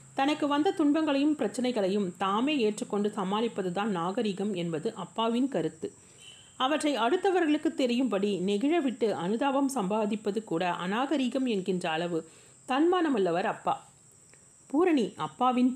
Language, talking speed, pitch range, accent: Tamil, 95 wpm, 185-255 Hz, native